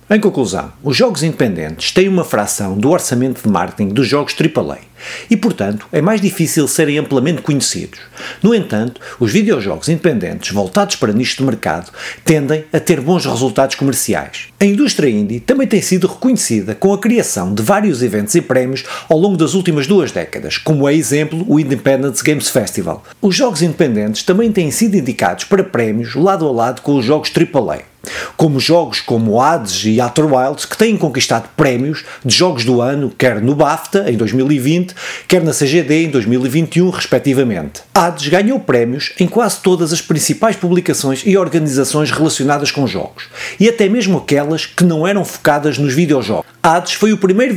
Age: 50-69